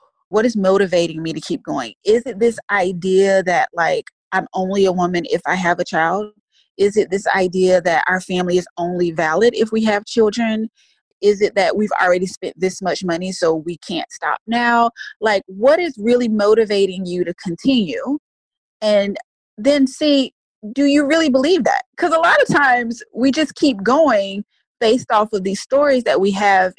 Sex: female